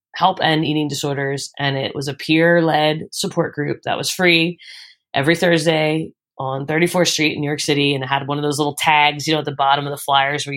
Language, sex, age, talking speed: English, female, 20-39, 225 wpm